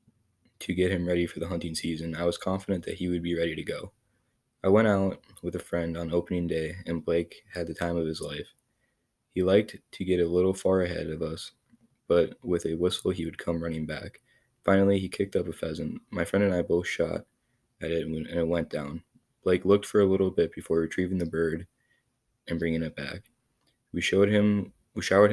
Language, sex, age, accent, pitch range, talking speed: English, male, 20-39, American, 85-95 Hz, 210 wpm